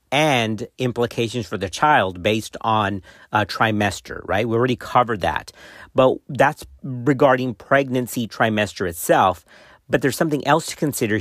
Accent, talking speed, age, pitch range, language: American, 140 wpm, 50-69, 105-145 Hz, English